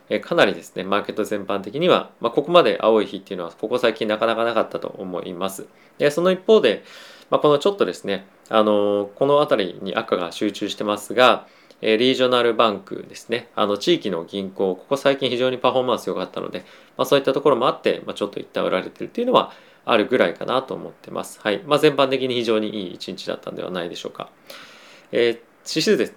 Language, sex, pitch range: Japanese, male, 105-140 Hz